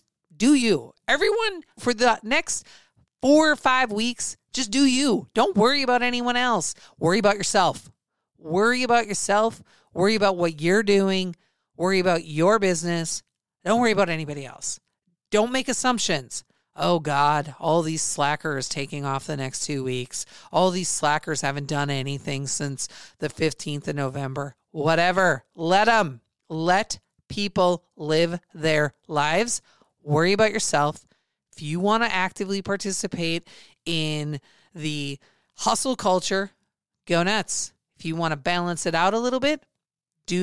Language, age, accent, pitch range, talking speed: English, 40-59, American, 155-230 Hz, 145 wpm